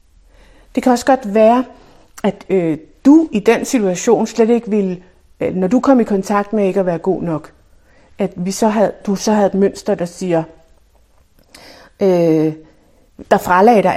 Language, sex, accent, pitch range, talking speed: Danish, female, native, 190-245 Hz, 175 wpm